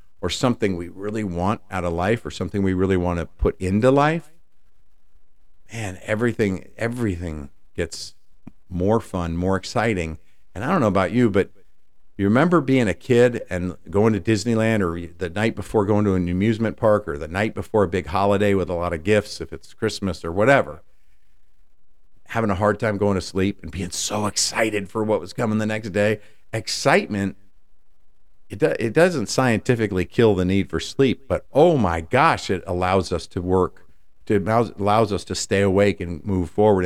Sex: male